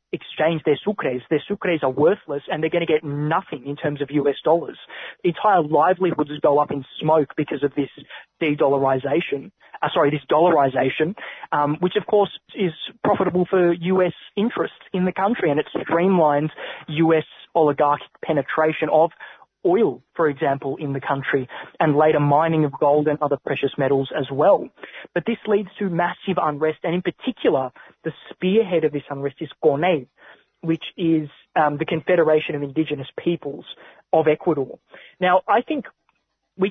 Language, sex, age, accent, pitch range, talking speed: English, male, 20-39, Australian, 145-180 Hz, 160 wpm